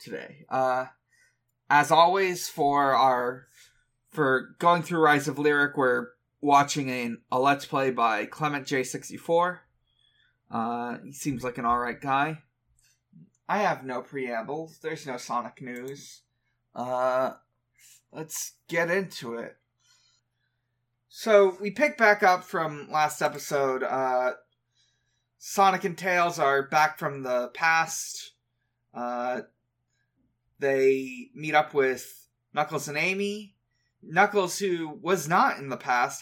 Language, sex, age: English, male, 20-39